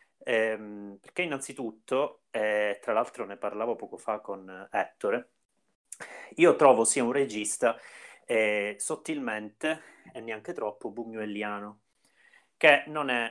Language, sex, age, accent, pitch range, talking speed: Italian, male, 30-49, native, 100-120 Hz, 125 wpm